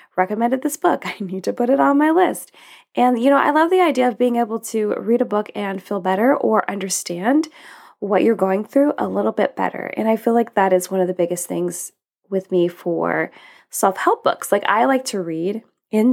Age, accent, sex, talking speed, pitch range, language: 20-39, American, female, 225 wpm, 180-235 Hz, English